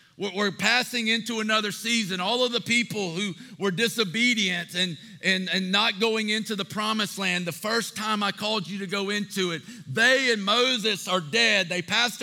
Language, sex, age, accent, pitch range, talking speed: English, male, 50-69, American, 175-230 Hz, 185 wpm